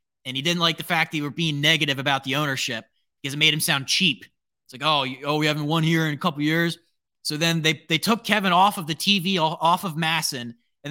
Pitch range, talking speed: 135-165 Hz, 265 wpm